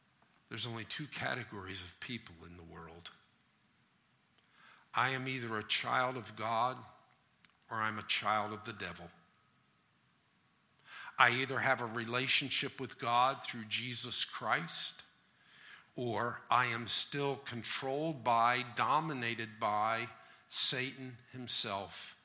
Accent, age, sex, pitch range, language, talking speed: American, 50-69, male, 110-140 Hz, English, 115 wpm